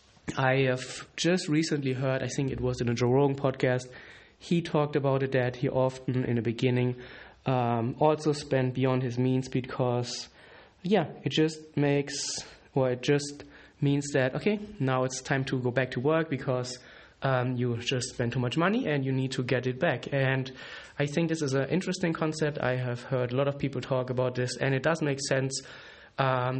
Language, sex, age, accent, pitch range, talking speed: English, male, 20-39, German, 125-145 Hz, 200 wpm